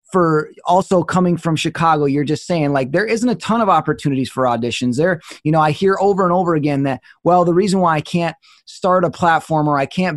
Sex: male